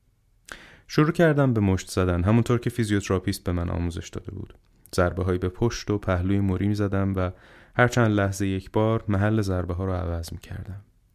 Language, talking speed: English, 185 wpm